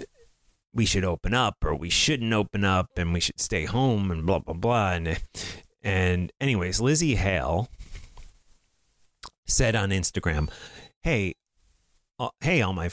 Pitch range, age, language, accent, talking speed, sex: 90-115 Hz, 30-49, English, American, 145 wpm, male